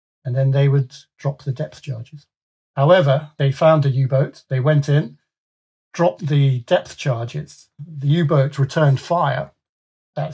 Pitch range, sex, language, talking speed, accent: 130-150 Hz, male, English, 145 wpm, British